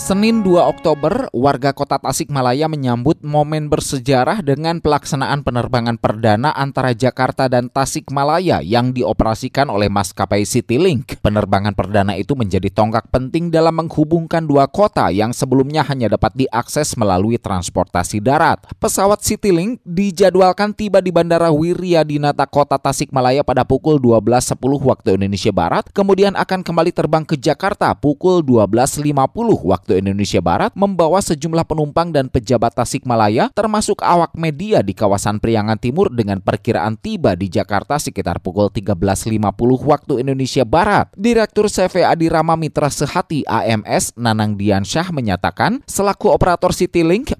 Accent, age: native, 20-39